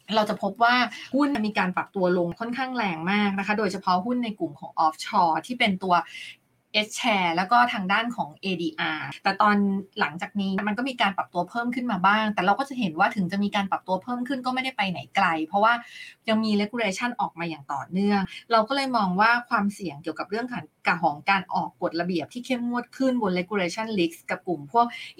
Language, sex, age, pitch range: Thai, female, 20-39, 180-235 Hz